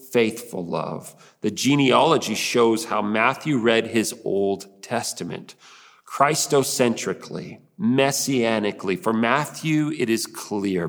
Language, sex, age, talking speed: English, male, 40-59, 100 wpm